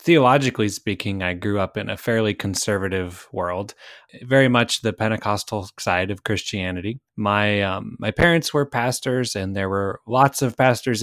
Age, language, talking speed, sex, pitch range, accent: 20-39, English, 160 wpm, male, 100-125 Hz, American